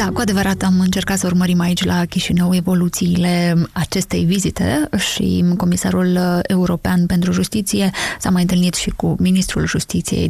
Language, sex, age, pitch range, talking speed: Romanian, female, 20-39, 170-195 Hz, 145 wpm